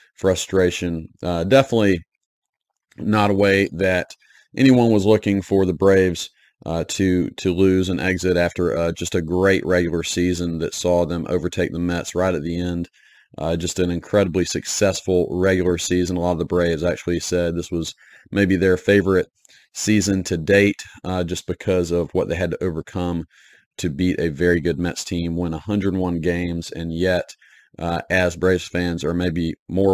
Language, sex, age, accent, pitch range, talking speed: English, male, 30-49, American, 85-95 Hz, 170 wpm